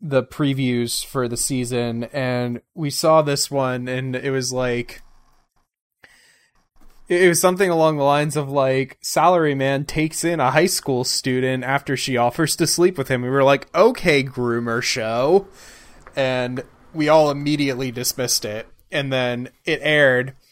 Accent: American